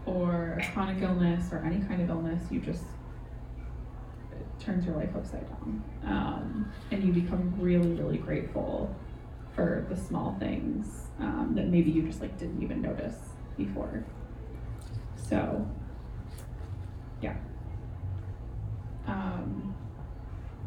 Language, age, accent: English, 20-39, American